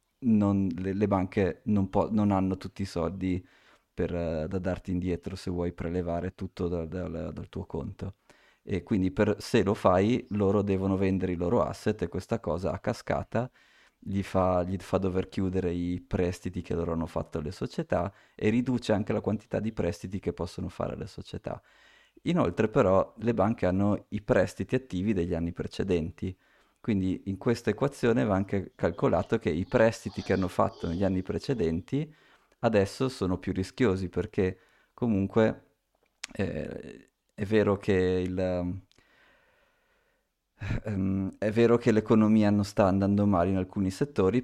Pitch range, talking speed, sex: 90-105 Hz, 160 wpm, male